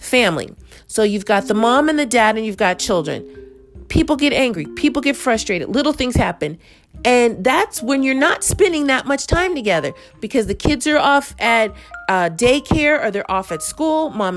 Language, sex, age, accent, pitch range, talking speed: English, female, 40-59, American, 185-265 Hz, 190 wpm